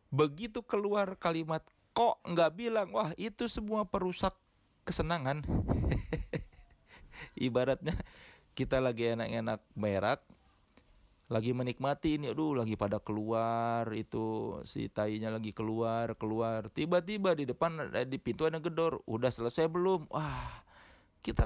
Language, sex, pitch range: Indonesian, male, 115-160 Hz